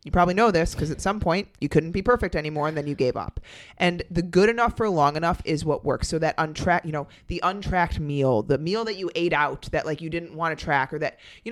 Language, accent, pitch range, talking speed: English, American, 150-205 Hz, 270 wpm